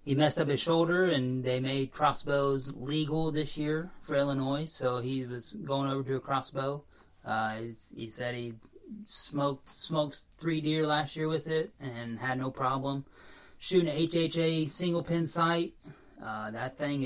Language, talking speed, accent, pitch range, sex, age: English, 170 wpm, American, 120-155 Hz, male, 20-39